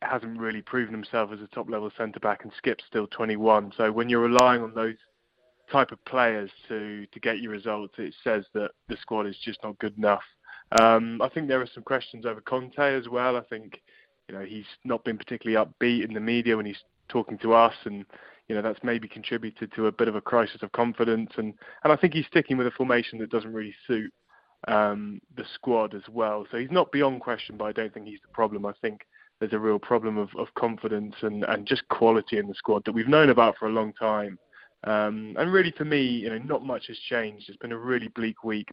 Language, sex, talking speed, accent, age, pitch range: English, male, 235 wpm, British, 20-39, 105-120 Hz